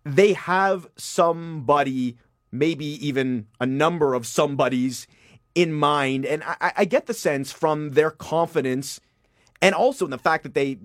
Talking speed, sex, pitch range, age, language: 150 wpm, male, 125-155 Hz, 30-49, English